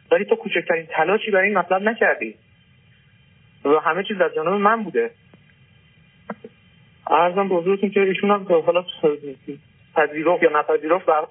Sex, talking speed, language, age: male, 140 wpm, Persian, 30-49